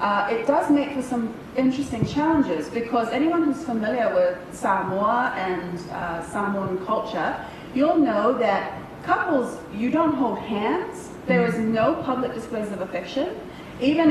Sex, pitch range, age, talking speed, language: female, 215-280 Hz, 30-49, 145 wpm, English